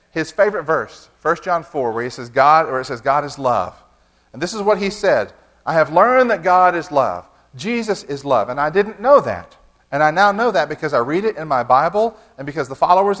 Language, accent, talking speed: English, American, 225 wpm